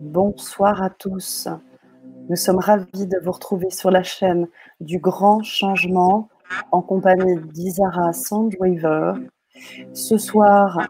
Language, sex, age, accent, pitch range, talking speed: French, female, 30-49, French, 170-205 Hz, 115 wpm